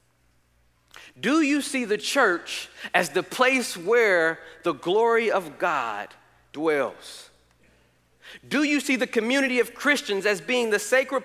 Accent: American